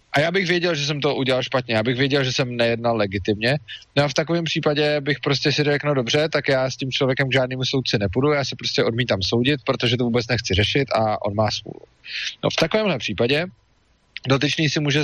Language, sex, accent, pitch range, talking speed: Czech, male, native, 110-140 Hz, 225 wpm